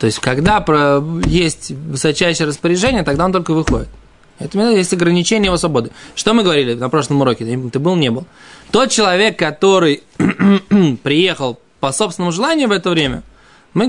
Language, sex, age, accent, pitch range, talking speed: Russian, male, 20-39, native, 140-200 Hz, 165 wpm